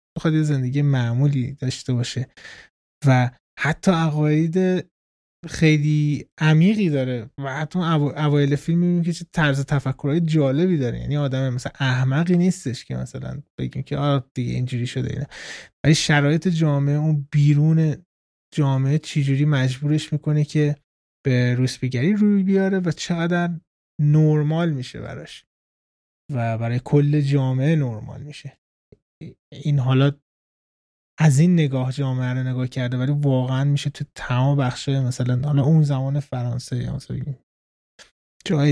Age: 20-39